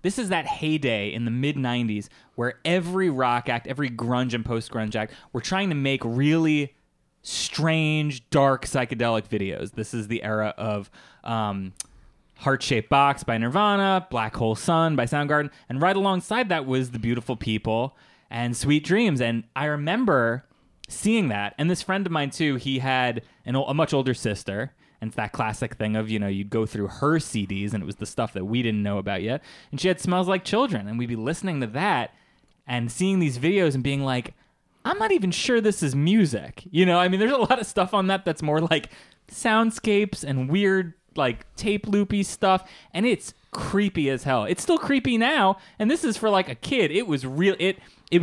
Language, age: English, 20-39